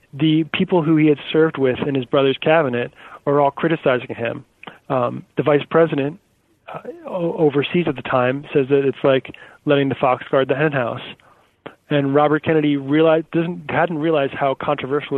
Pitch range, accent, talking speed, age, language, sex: 130-160 Hz, American, 180 wpm, 20-39, English, male